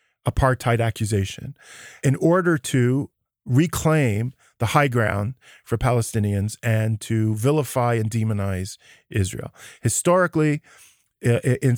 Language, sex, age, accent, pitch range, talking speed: English, male, 40-59, American, 110-135 Hz, 95 wpm